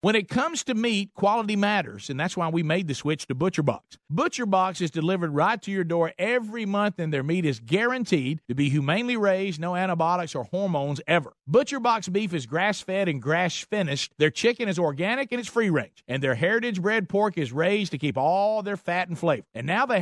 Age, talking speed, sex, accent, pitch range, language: 50-69, 205 wpm, male, American, 160-215 Hz, English